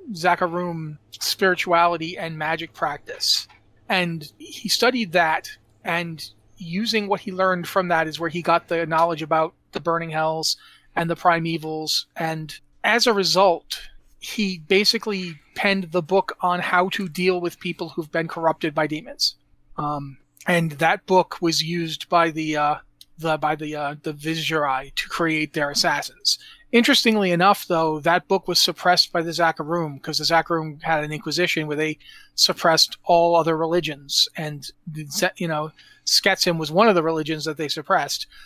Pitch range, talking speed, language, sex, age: 155-180 Hz, 160 wpm, English, male, 30-49